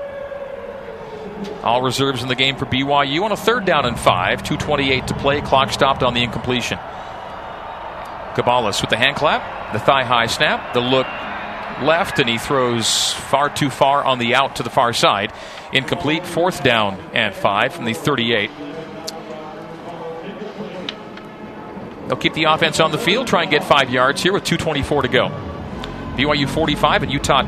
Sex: male